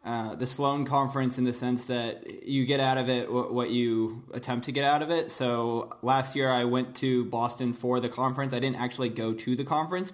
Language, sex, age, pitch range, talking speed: English, male, 20-39, 115-125 Hz, 230 wpm